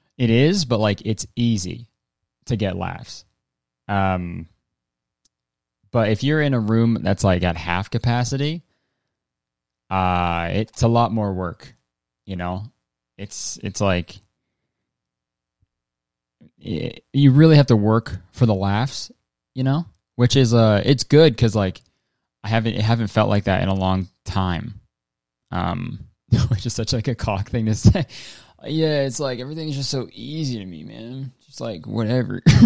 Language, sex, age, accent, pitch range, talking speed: English, male, 20-39, American, 90-120 Hz, 155 wpm